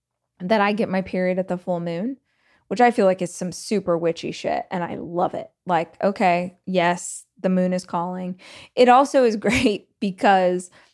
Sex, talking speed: female, 185 wpm